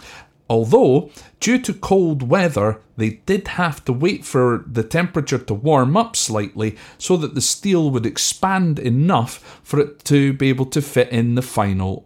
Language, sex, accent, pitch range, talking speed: English, male, British, 120-160 Hz, 170 wpm